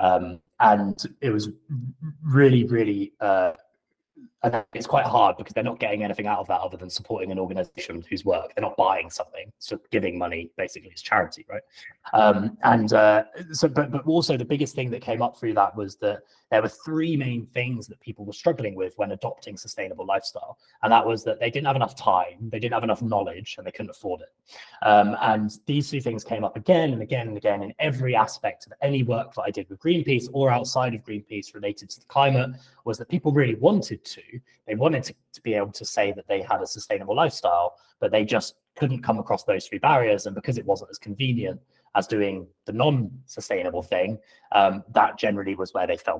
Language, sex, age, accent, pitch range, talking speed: English, male, 20-39, British, 105-135 Hz, 215 wpm